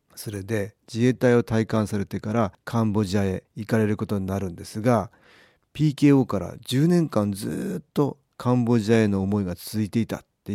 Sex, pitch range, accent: male, 100-130 Hz, native